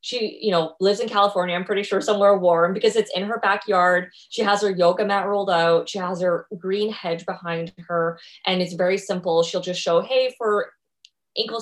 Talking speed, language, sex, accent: 205 wpm, English, female, American